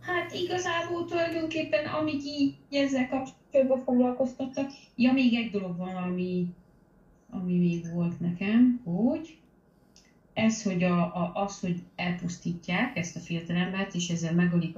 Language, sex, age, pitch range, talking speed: Hungarian, female, 30-49, 175-230 Hz, 135 wpm